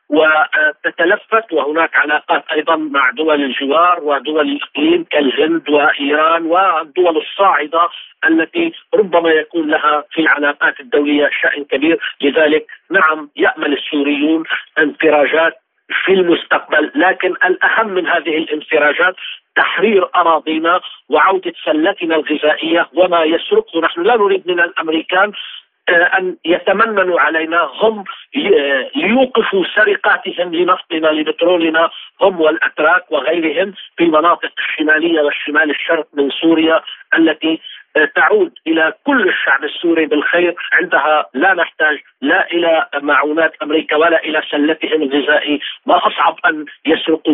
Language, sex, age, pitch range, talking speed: Arabic, male, 50-69, 150-195 Hz, 110 wpm